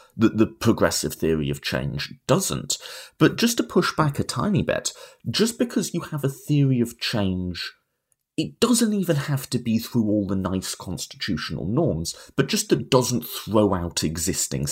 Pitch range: 90-135 Hz